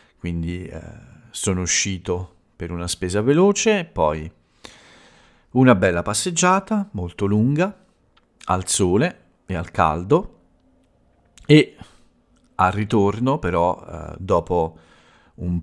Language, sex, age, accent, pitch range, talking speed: Italian, male, 50-69, native, 85-105 Hz, 100 wpm